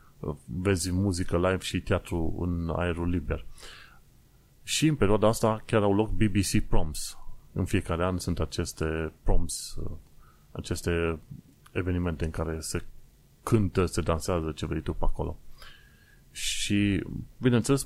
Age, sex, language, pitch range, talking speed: 30-49, male, Romanian, 85-100 Hz, 130 wpm